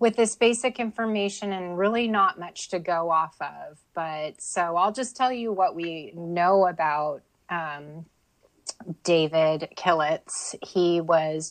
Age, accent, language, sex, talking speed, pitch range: 30-49, American, English, female, 140 wpm, 160-195 Hz